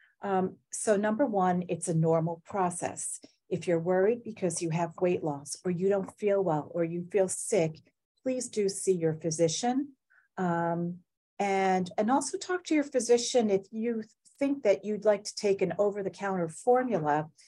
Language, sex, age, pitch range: English, female, 40-59, 170-215 Hz